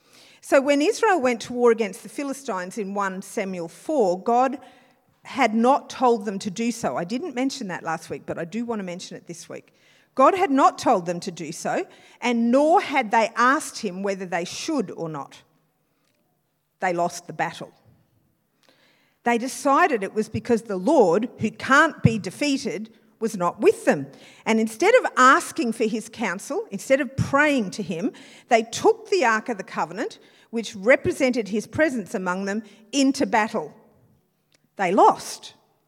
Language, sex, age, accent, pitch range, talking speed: English, female, 50-69, Australian, 190-270 Hz, 170 wpm